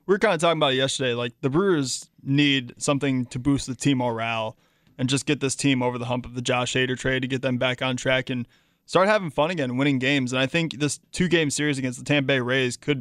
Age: 20-39